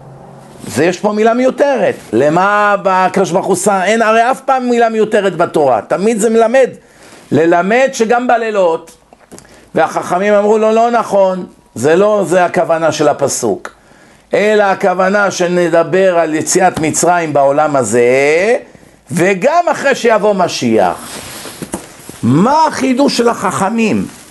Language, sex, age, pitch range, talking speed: English, male, 50-69, 165-220 Hz, 120 wpm